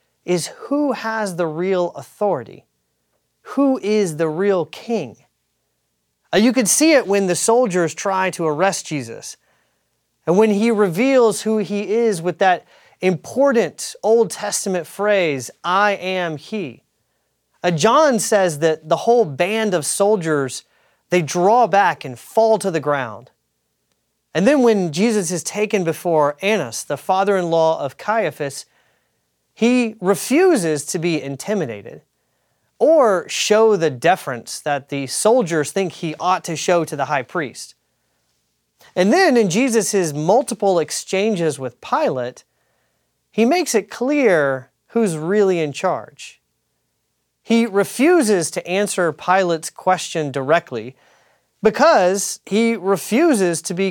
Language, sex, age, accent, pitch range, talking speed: English, male, 30-49, American, 155-215 Hz, 130 wpm